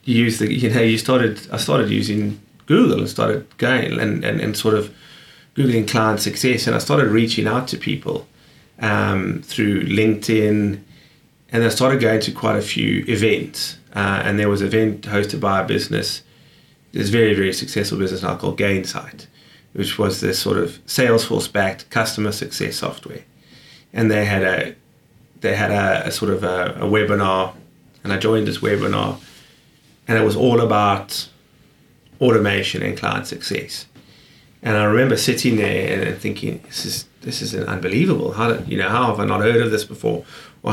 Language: English